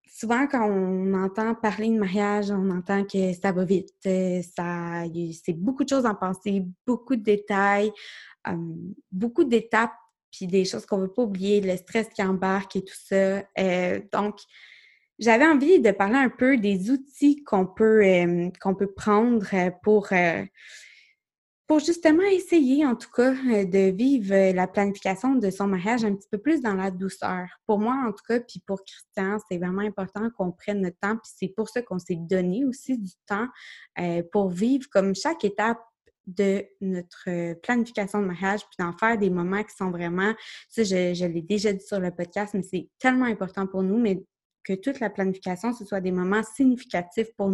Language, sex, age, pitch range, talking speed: French, female, 20-39, 190-230 Hz, 185 wpm